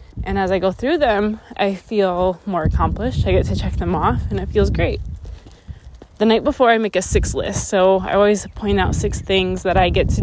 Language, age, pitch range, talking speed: English, 20-39, 175-215 Hz, 230 wpm